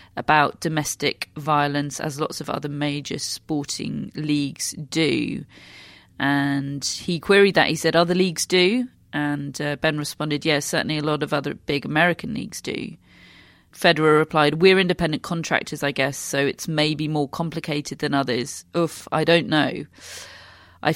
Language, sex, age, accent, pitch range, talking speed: English, female, 30-49, British, 140-165 Hz, 150 wpm